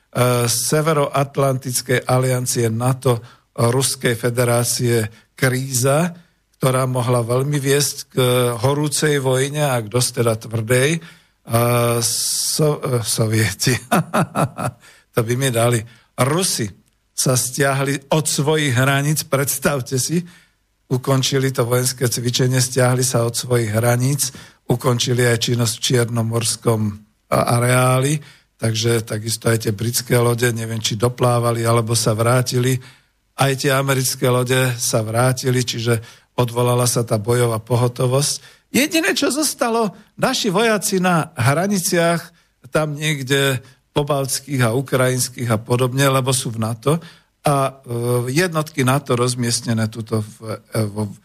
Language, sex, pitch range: Slovak, male, 120-140 Hz